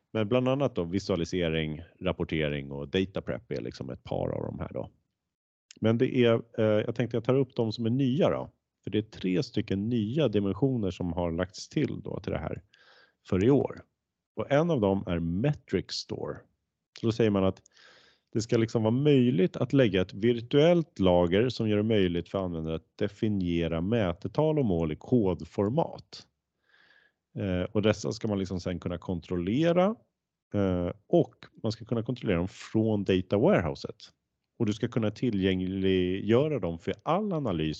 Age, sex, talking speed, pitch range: 30-49, male, 180 wpm, 90-115 Hz